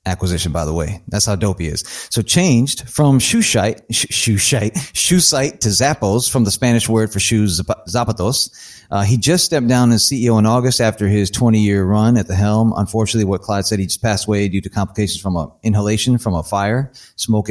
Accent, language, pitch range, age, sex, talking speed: American, English, 100-125 Hz, 30-49, male, 215 wpm